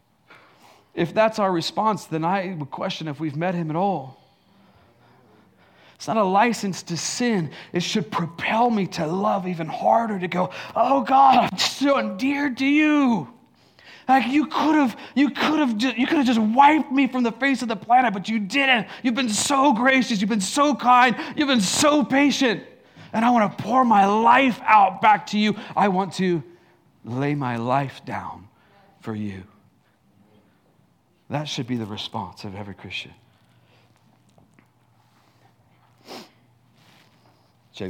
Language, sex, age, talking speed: English, male, 30-49, 160 wpm